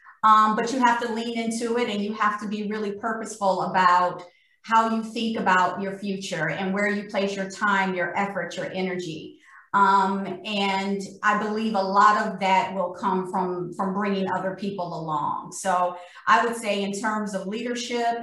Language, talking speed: English, 185 wpm